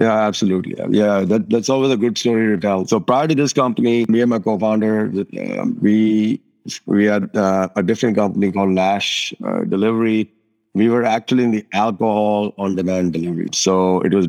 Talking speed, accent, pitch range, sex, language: 185 wpm, Indian, 100-120 Hz, male, English